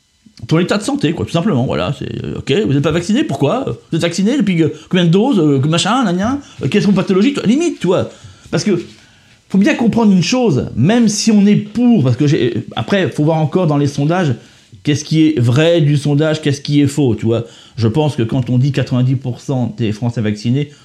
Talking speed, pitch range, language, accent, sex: 210 wpm, 125-165 Hz, French, French, male